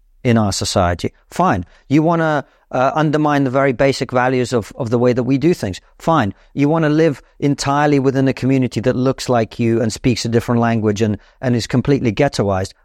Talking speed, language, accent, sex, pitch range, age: 205 wpm, English, British, male, 105-135 Hz, 40-59